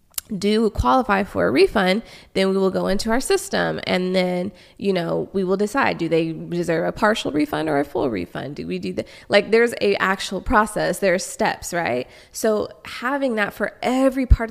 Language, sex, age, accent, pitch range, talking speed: English, female, 20-39, American, 170-205 Hz, 200 wpm